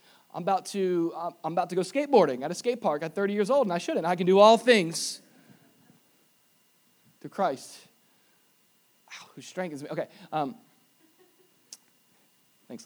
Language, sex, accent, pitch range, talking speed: English, male, American, 160-220 Hz, 155 wpm